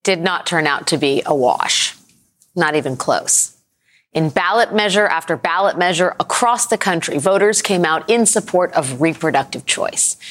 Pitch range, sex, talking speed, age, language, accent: 160-215 Hz, female, 165 wpm, 30-49, English, American